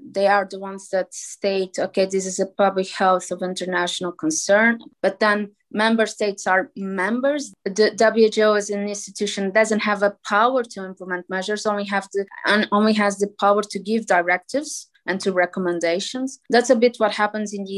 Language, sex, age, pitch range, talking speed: Polish, female, 20-39, 190-225 Hz, 180 wpm